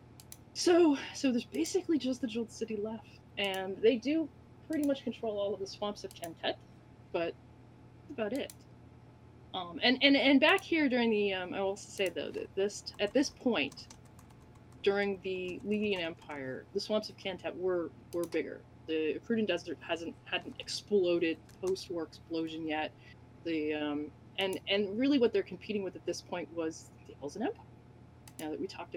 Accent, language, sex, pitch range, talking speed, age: American, English, female, 160-225 Hz, 175 wpm, 20-39